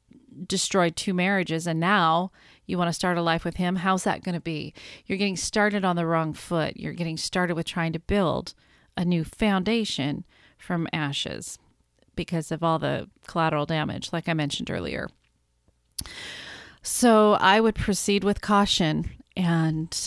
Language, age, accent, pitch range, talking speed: English, 30-49, American, 165-210 Hz, 160 wpm